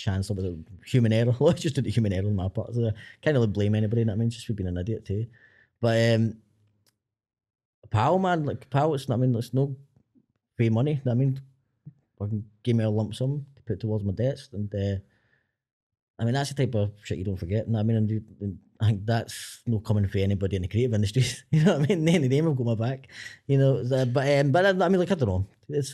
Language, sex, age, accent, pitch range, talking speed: English, male, 20-39, British, 110-135 Hz, 255 wpm